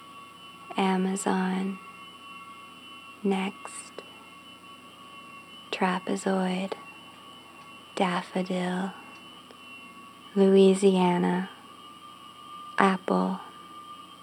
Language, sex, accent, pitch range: English, female, American, 190-295 Hz